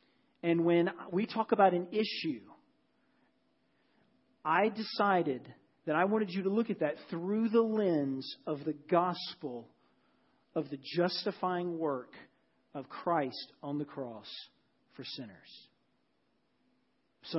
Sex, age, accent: male, 40-59, American